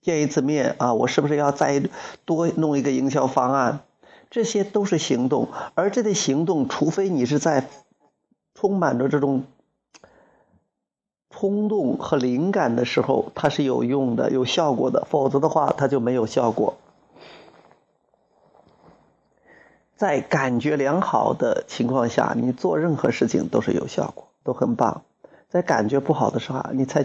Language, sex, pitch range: Chinese, male, 130-160 Hz